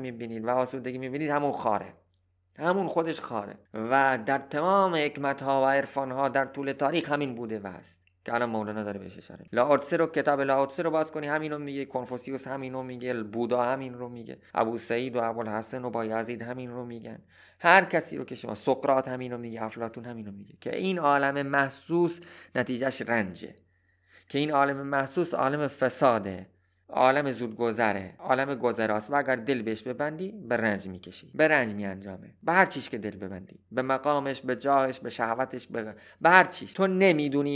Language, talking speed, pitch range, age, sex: Persian, 180 wpm, 110-140 Hz, 30-49, male